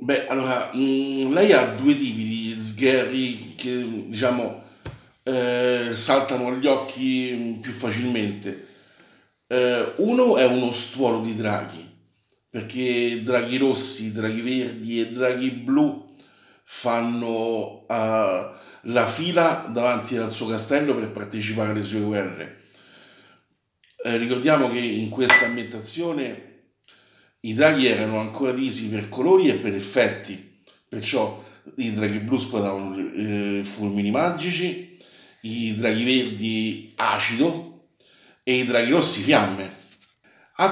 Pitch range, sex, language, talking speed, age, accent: 110-140 Hz, male, Italian, 115 wpm, 50-69, native